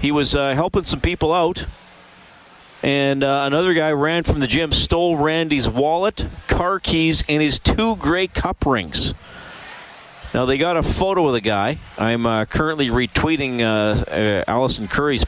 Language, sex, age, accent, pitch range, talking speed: English, male, 40-59, American, 105-145 Hz, 165 wpm